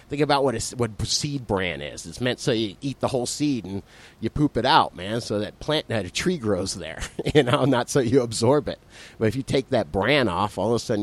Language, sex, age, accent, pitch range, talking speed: English, male, 30-49, American, 110-145 Hz, 250 wpm